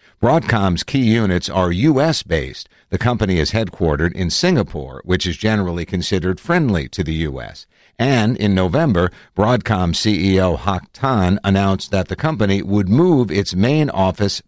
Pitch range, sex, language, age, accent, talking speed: 85-115 Hz, male, English, 60-79, American, 145 wpm